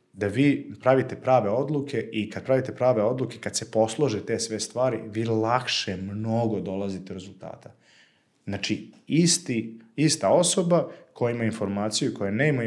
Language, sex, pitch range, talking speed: Croatian, male, 105-130 Hz, 145 wpm